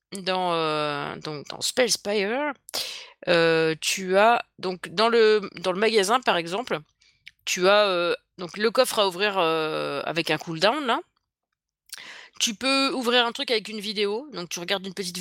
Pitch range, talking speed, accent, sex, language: 175-235 Hz, 165 wpm, French, female, French